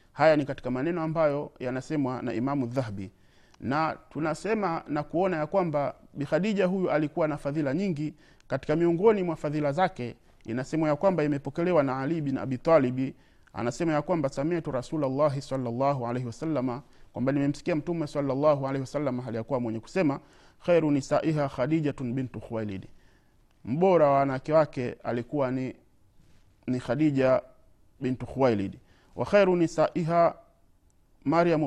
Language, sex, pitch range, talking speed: Swahili, male, 125-160 Hz, 135 wpm